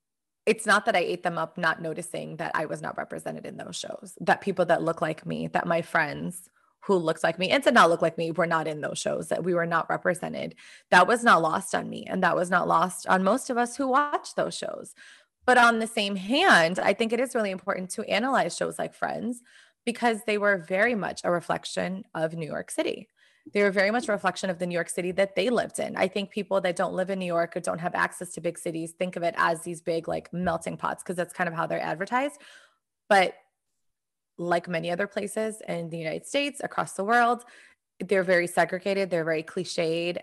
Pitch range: 170-205 Hz